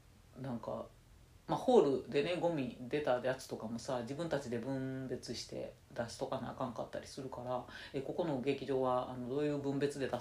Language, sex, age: Japanese, female, 40-59